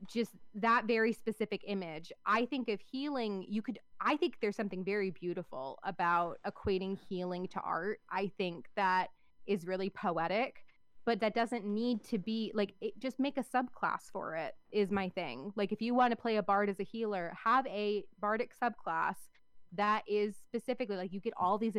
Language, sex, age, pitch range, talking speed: English, female, 20-39, 180-220 Hz, 185 wpm